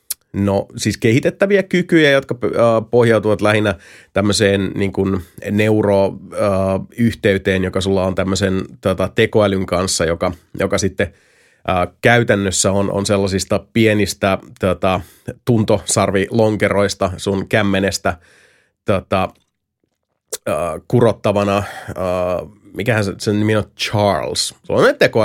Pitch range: 95-110 Hz